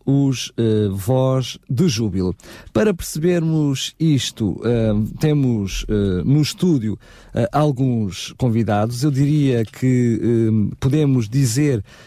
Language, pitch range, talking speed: Portuguese, 115-145 Hz, 110 wpm